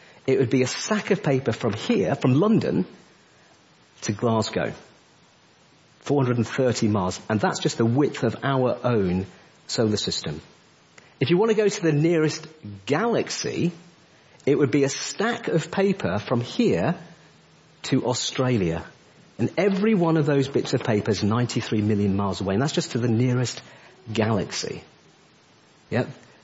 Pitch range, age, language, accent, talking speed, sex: 125-180 Hz, 50-69, English, British, 150 wpm, male